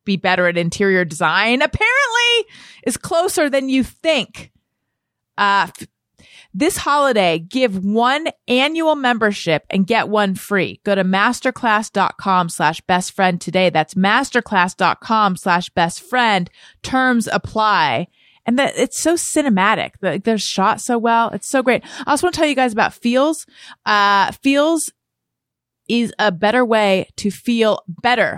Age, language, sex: 30-49, English, female